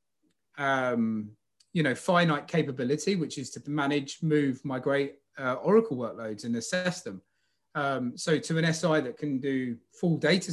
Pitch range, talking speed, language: 115-160 Hz, 155 wpm, English